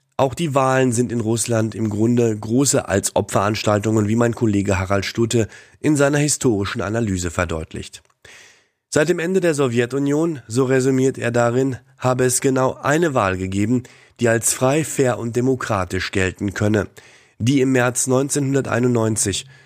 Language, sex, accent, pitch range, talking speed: German, male, German, 105-130 Hz, 145 wpm